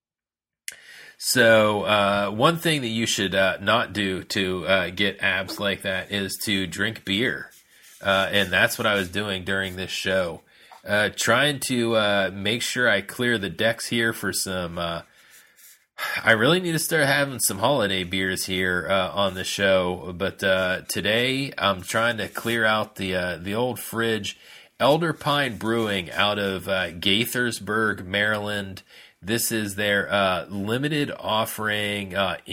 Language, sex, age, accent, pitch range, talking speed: English, male, 30-49, American, 95-115 Hz, 160 wpm